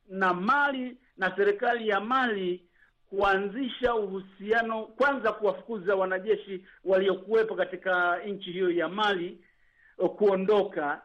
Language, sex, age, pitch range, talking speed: Swahili, male, 50-69, 190-245 Hz, 105 wpm